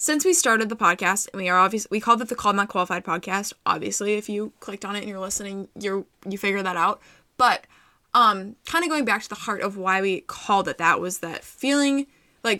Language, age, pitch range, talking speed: English, 10-29, 195-235 Hz, 240 wpm